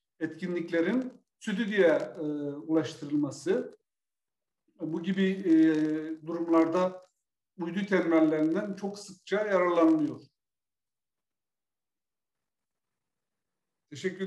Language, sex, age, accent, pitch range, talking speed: Turkish, male, 50-69, native, 150-190 Hz, 65 wpm